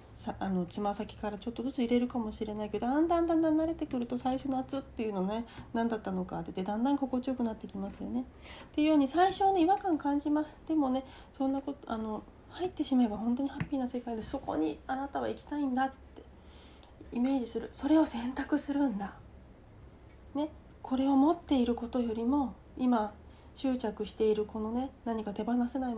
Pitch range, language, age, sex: 220-285 Hz, Japanese, 40-59, female